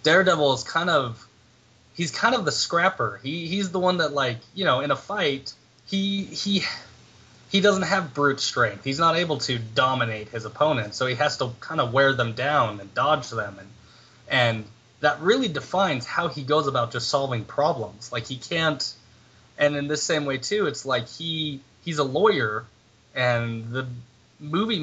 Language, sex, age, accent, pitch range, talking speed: English, male, 20-39, American, 115-150 Hz, 185 wpm